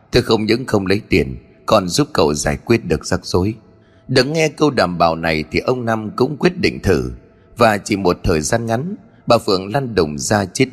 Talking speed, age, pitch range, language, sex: 220 wpm, 30-49, 95-140 Hz, Vietnamese, male